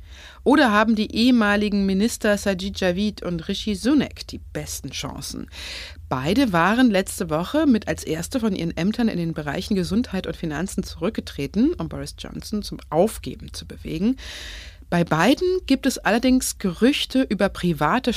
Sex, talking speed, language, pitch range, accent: female, 150 wpm, German, 155-225 Hz, German